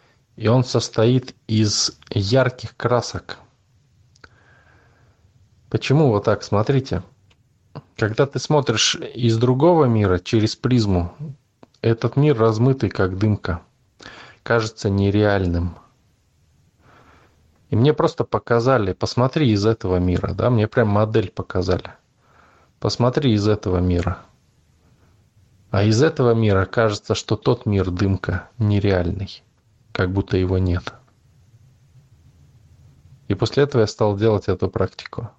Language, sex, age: Russian, male, 20-39